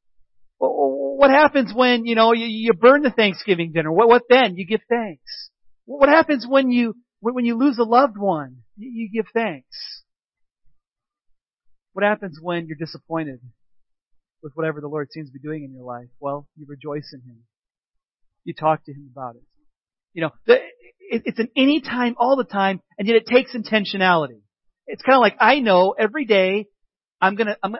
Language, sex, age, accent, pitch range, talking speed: English, male, 40-59, American, 160-230 Hz, 185 wpm